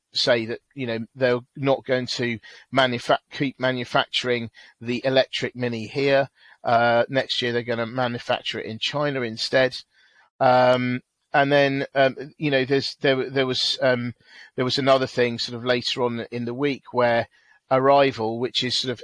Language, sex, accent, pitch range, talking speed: English, male, British, 120-140 Hz, 165 wpm